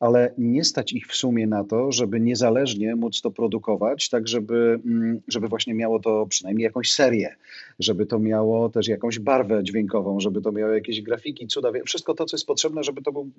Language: Polish